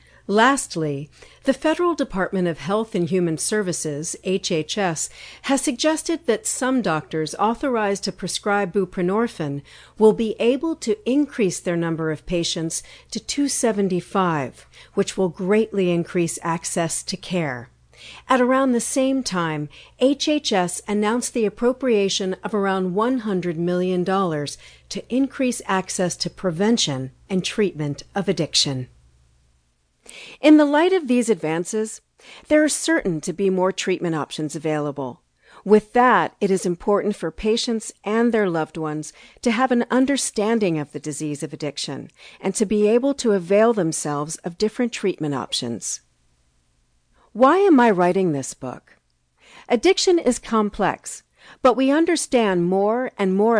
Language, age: English, 50-69